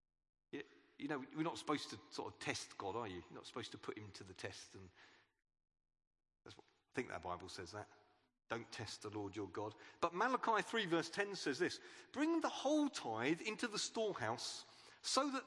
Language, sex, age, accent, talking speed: English, male, 40-59, British, 200 wpm